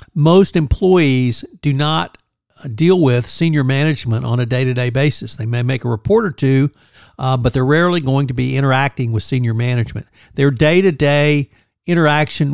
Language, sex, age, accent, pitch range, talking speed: English, male, 60-79, American, 120-155 Hz, 160 wpm